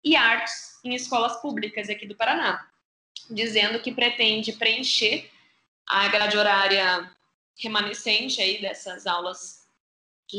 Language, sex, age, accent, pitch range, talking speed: Portuguese, female, 20-39, Brazilian, 210-255 Hz, 115 wpm